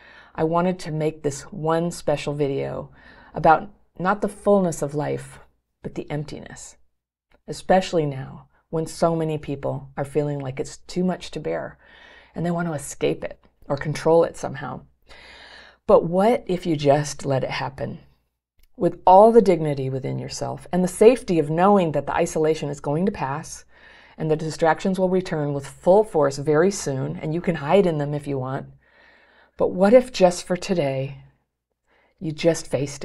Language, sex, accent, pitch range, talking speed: English, female, American, 140-175 Hz, 175 wpm